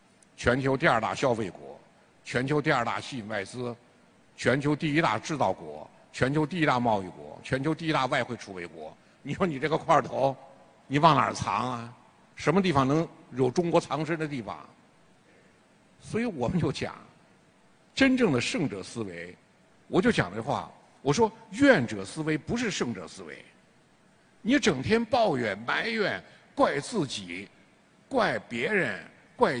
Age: 60-79